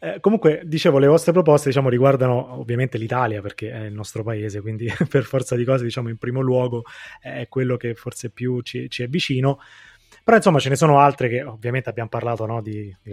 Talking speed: 210 wpm